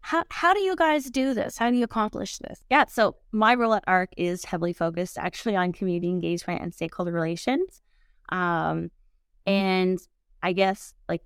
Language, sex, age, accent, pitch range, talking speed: English, female, 20-39, American, 170-210 Hz, 175 wpm